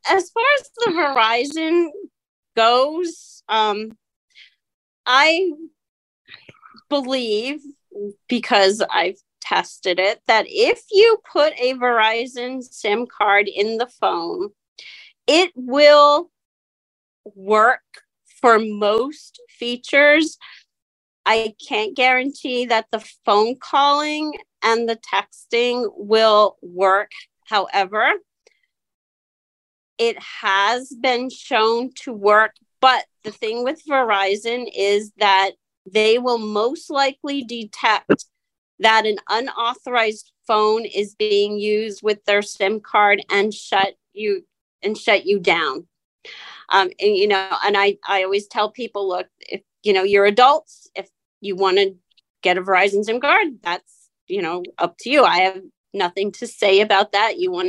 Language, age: English, 40-59